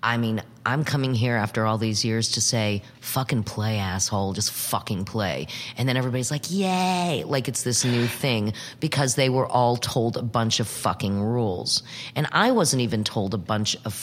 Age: 30-49